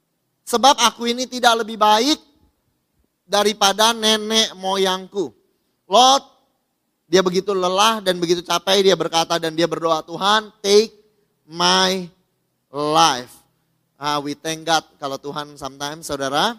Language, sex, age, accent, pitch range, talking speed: Indonesian, male, 20-39, native, 165-215 Hz, 115 wpm